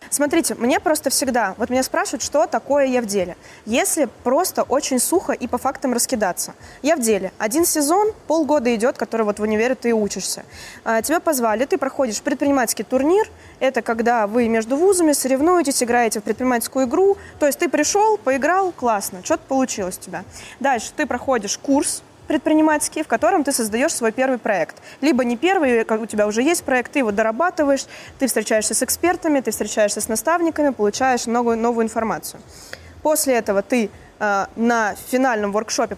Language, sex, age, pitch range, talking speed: Russian, female, 20-39, 220-290 Hz, 165 wpm